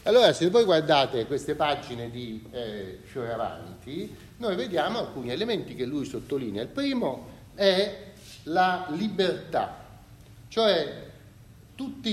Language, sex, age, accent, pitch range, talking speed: Italian, male, 40-59, native, 120-190 Hz, 115 wpm